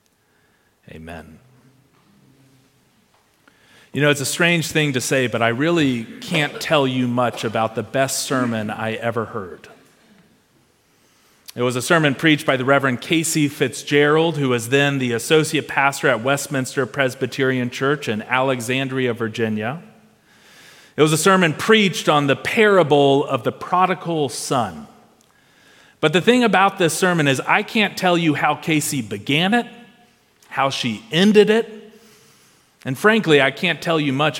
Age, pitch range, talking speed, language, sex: 40-59, 130-175 Hz, 145 wpm, English, male